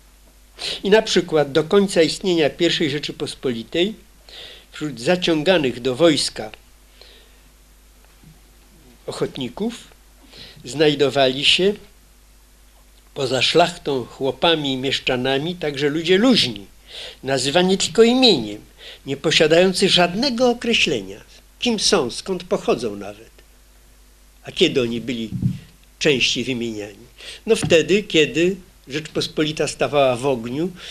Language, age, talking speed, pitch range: Polish, 50-69, 95 wpm, 135-180 Hz